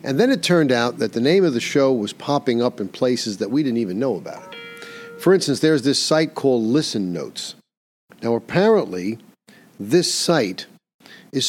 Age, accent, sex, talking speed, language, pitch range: 50-69, American, male, 190 wpm, English, 110-145 Hz